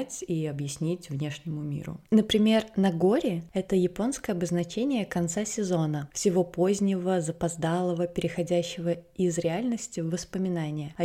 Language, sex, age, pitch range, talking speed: Russian, female, 20-39, 170-205 Hz, 110 wpm